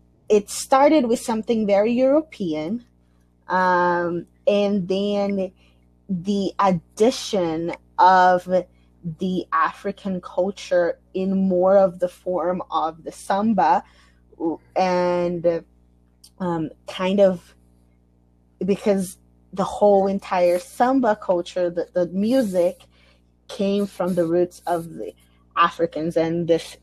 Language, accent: English, American